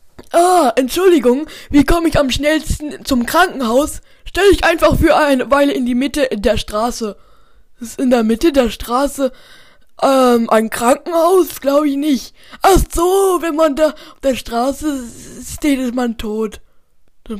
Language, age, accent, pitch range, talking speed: German, 20-39, German, 250-320 Hz, 160 wpm